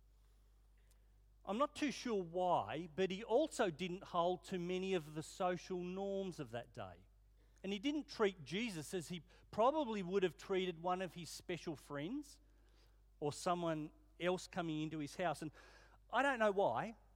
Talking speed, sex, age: 165 wpm, male, 40-59